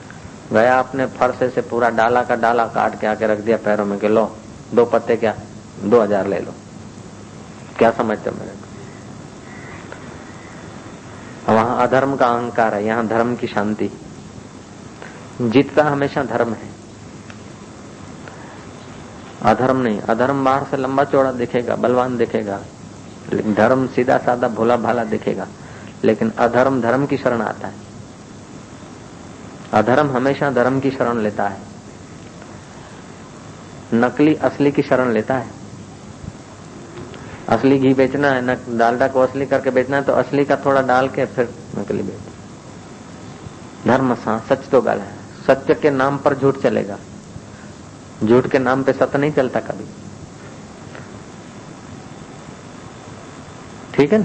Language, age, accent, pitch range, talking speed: Hindi, 50-69, native, 115-135 Hz, 115 wpm